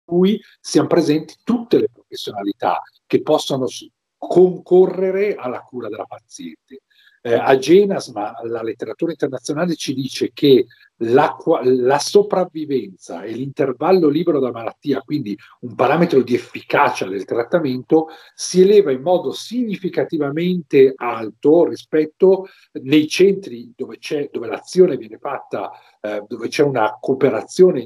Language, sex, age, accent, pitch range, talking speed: Italian, male, 50-69, native, 135-210 Hz, 125 wpm